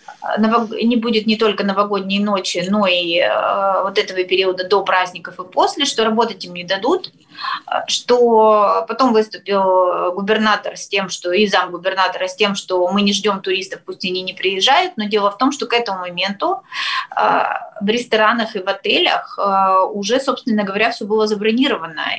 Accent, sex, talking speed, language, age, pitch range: native, female, 170 wpm, Russian, 20-39, 195-245 Hz